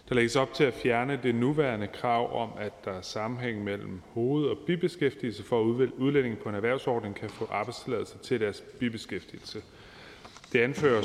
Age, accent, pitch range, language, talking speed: 30-49, native, 105-130 Hz, Danish, 175 wpm